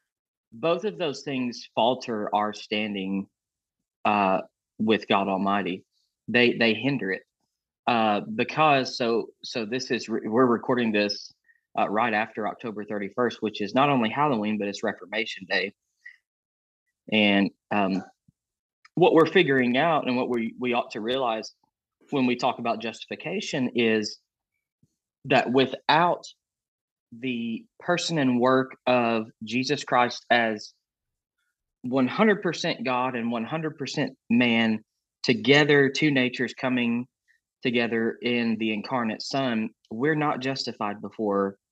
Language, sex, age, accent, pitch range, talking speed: English, male, 20-39, American, 110-135 Hz, 125 wpm